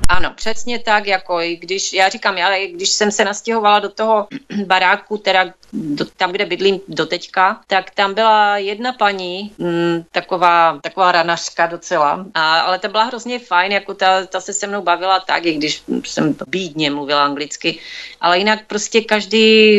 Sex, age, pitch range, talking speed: female, 30-49, 175-210 Hz, 170 wpm